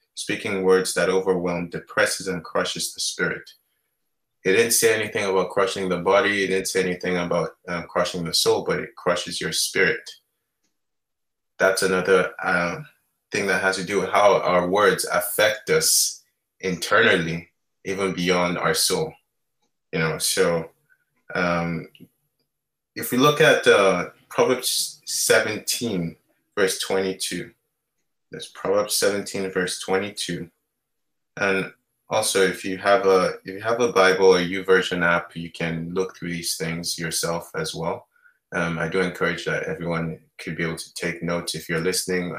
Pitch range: 85-95 Hz